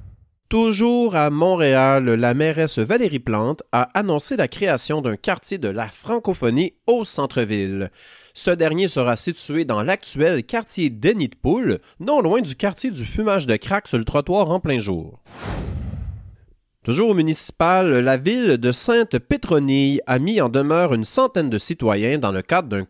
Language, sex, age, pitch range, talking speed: French, male, 40-59, 115-185 Hz, 155 wpm